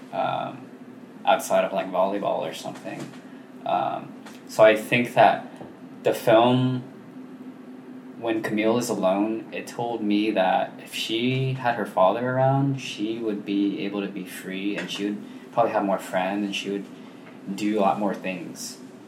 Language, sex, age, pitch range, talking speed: English, male, 20-39, 100-115 Hz, 155 wpm